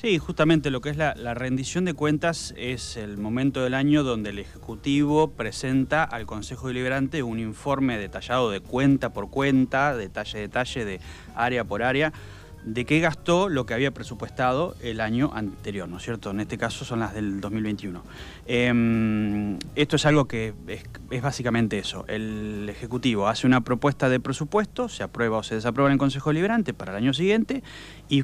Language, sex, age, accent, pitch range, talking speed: Spanish, male, 20-39, Argentinian, 110-145 Hz, 185 wpm